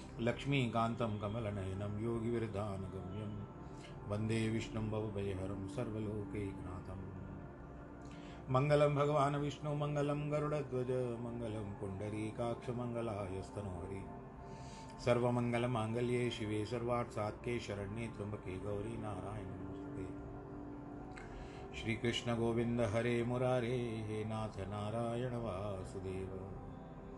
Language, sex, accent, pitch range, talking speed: Hindi, male, native, 95-120 Hz, 70 wpm